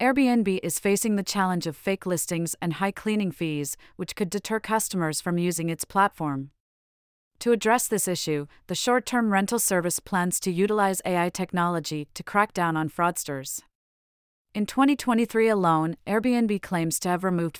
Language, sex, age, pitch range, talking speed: English, female, 30-49, 170-205 Hz, 155 wpm